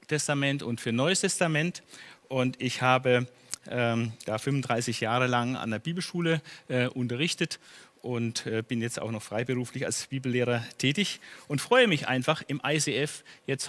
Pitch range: 130-180 Hz